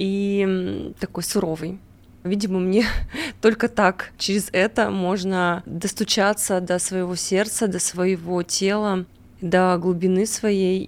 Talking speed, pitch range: 110 wpm, 185-230 Hz